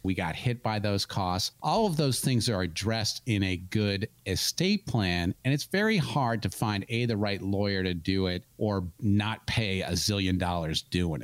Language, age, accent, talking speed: English, 40-59, American, 200 wpm